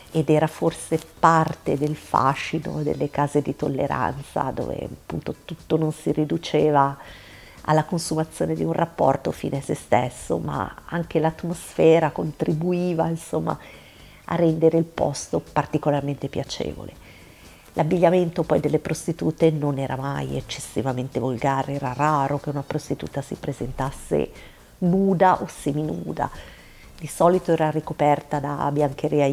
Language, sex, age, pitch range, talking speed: Italian, female, 50-69, 140-160 Hz, 125 wpm